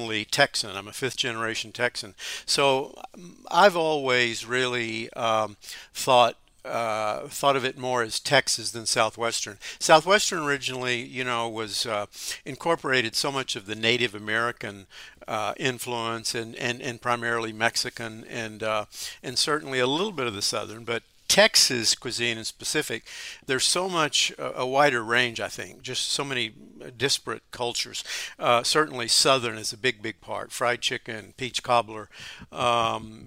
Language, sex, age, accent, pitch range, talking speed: English, male, 60-79, American, 115-130 Hz, 145 wpm